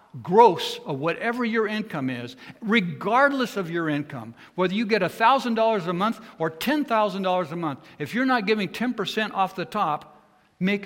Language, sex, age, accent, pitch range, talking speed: English, male, 60-79, American, 150-205 Hz, 180 wpm